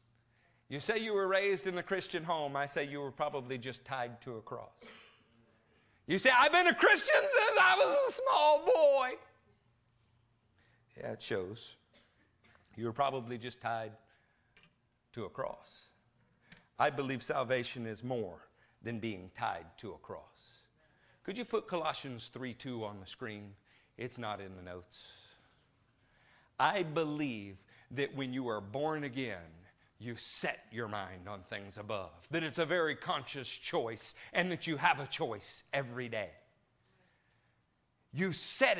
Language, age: English, 50-69